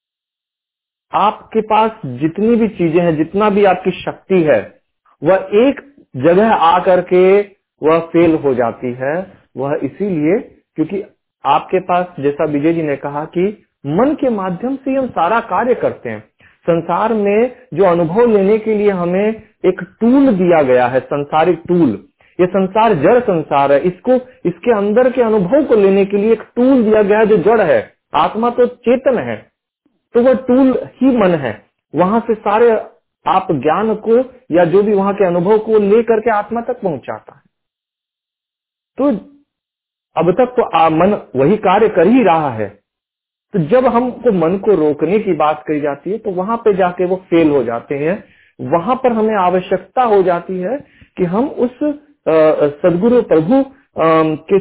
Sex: male